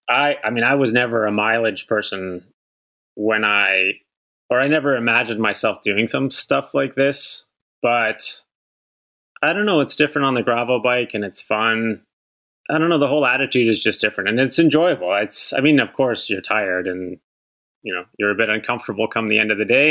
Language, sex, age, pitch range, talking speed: English, male, 30-49, 105-135 Hz, 200 wpm